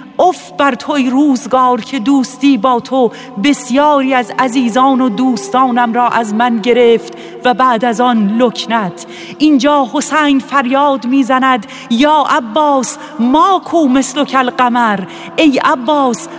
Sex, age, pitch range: female, 40-59, 255-300 Hz